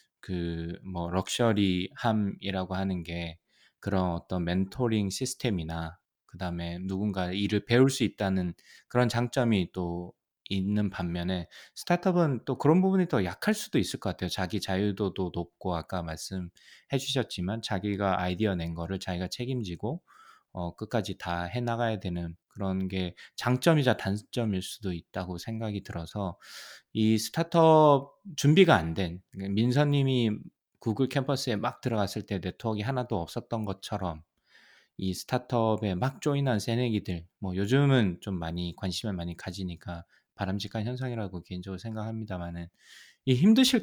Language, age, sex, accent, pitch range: Korean, 20-39, male, native, 90-120 Hz